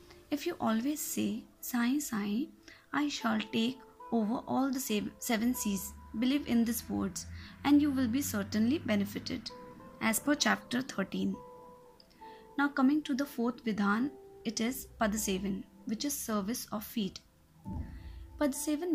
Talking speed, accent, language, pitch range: 135 wpm, native, Hindi, 215-275 Hz